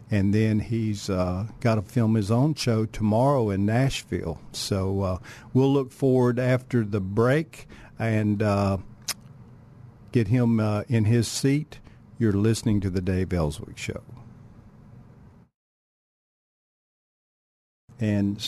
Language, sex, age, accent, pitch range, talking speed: English, male, 50-69, American, 100-120 Hz, 120 wpm